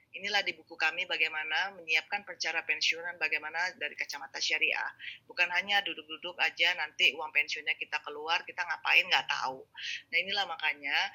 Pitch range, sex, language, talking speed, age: 155-180 Hz, female, Indonesian, 150 wpm, 20-39